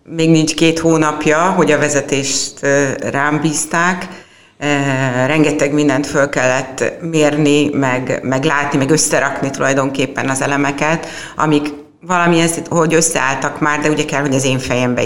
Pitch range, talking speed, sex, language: 135-160 Hz, 135 wpm, female, Hungarian